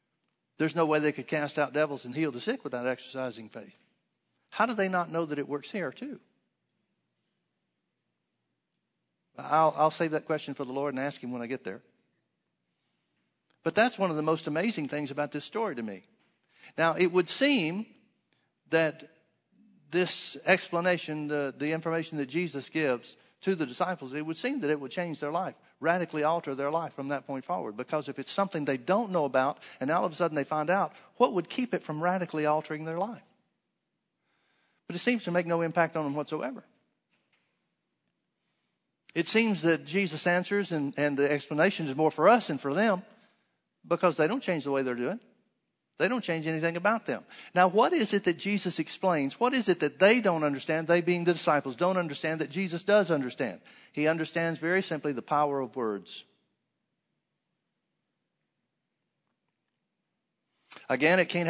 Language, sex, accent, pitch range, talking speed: English, male, American, 145-180 Hz, 180 wpm